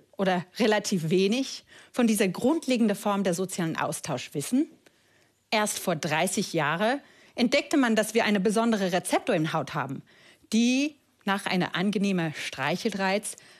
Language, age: German, 40-59